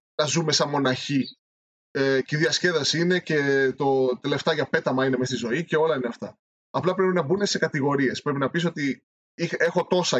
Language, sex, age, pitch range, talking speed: Greek, male, 20-39, 140-180 Hz, 205 wpm